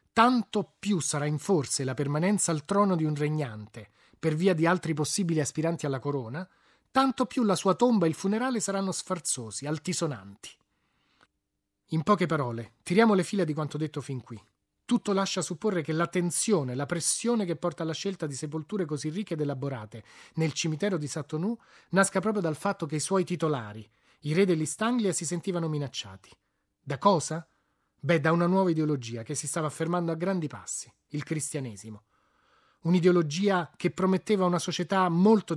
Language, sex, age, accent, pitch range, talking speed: Italian, male, 30-49, native, 150-195 Hz, 165 wpm